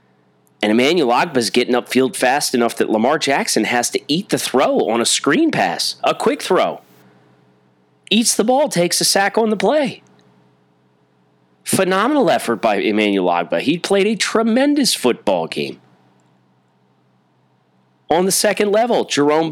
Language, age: English, 30-49